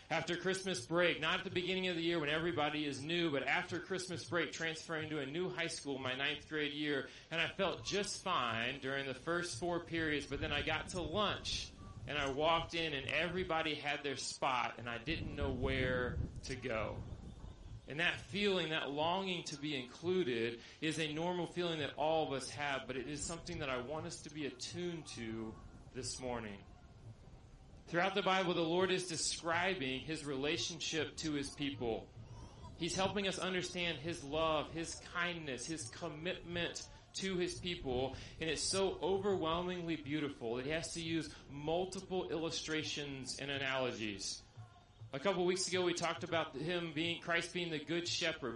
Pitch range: 130-175 Hz